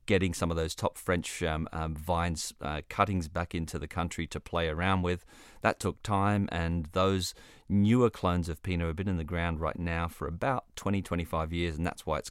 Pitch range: 80-95 Hz